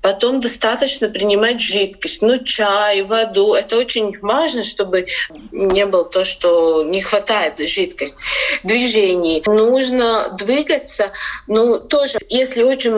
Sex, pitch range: female, 195-230 Hz